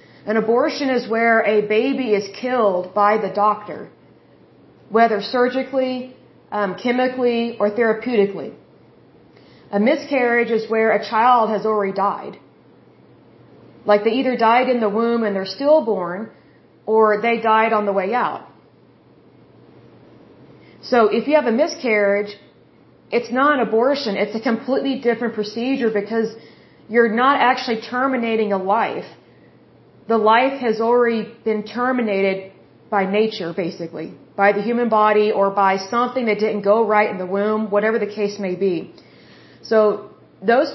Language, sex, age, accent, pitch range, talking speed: Bengali, female, 30-49, American, 205-245 Hz, 140 wpm